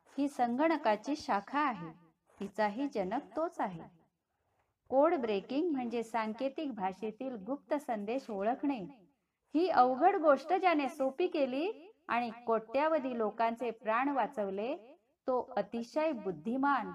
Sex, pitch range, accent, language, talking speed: female, 210-280 Hz, native, Marathi, 40 wpm